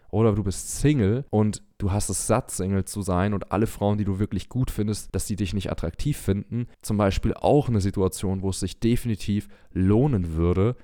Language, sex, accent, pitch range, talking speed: German, male, German, 85-105 Hz, 205 wpm